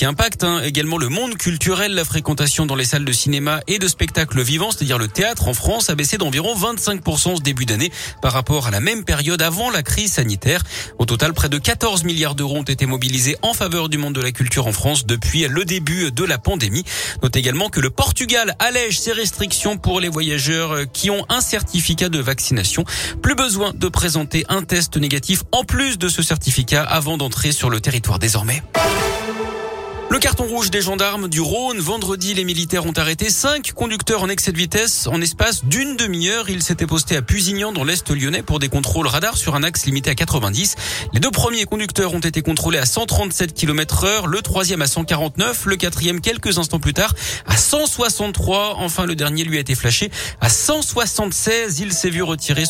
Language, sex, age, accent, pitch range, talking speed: French, male, 40-59, French, 140-195 Hz, 200 wpm